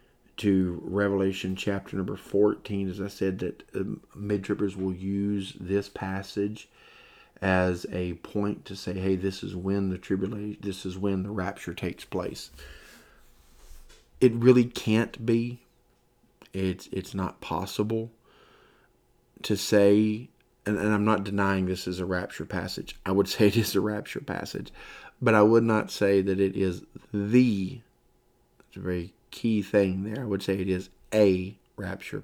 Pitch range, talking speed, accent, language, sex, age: 95-100 Hz, 155 wpm, American, English, male, 40-59